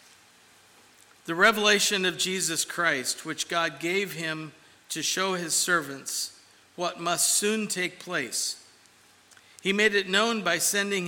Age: 50-69